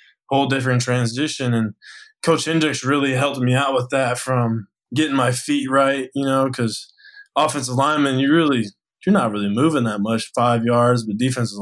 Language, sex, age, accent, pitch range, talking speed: English, male, 20-39, American, 120-140 Hz, 175 wpm